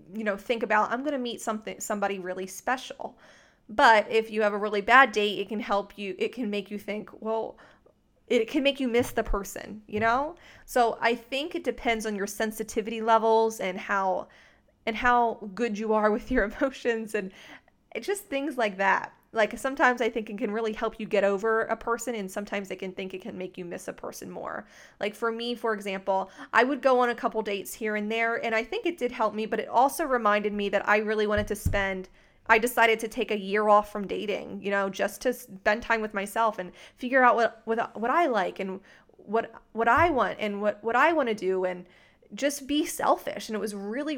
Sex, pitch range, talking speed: female, 205-235 Hz, 225 wpm